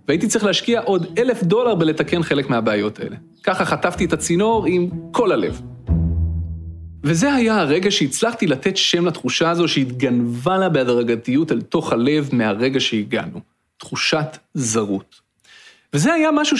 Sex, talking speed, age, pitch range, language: male, 135 wpm, 40-59, 130-210 Hz, Hebrew